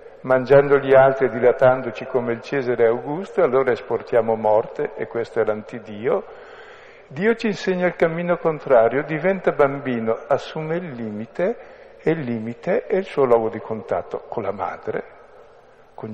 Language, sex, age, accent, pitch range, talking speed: Italian, male, 50-69, native, 125-180 Hz, 150 wpm